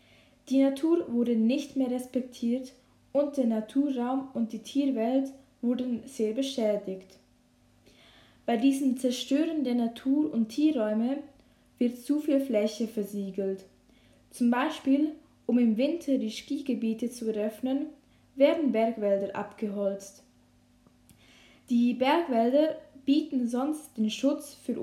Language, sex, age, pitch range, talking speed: German, female, 10-29, 215-275 Hz, 110 wpm